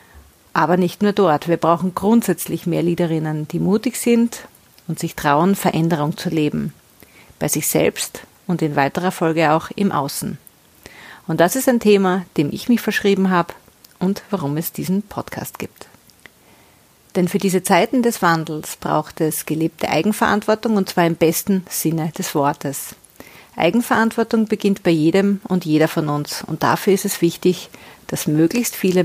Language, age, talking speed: German, 40-59, 160 wpm